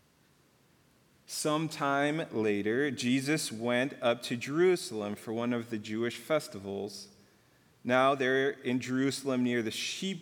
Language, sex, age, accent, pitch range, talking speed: English, male, 40-59, American, 115-140 Hz, 125 wpm